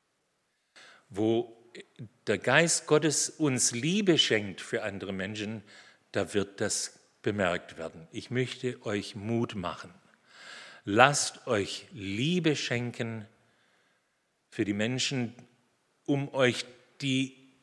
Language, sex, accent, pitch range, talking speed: German, male, German, 105-135 Hz, 100 wpm